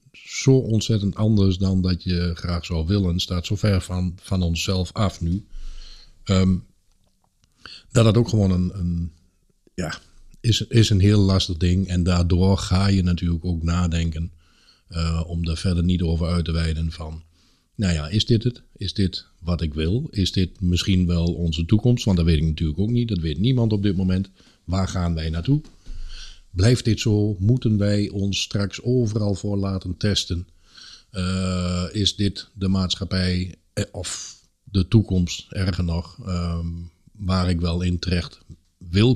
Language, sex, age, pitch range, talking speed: Dutch, male, 50-69, 85-100 Hz, 165 wpm